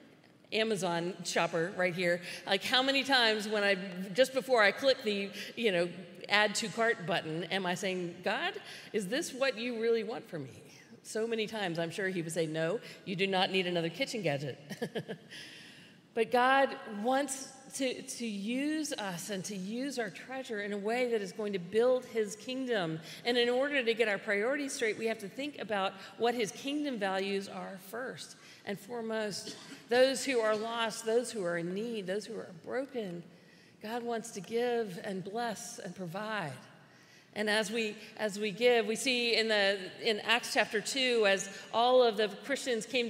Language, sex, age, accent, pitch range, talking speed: English, female, 50-69, American, 195-235 Hz, 185 wpm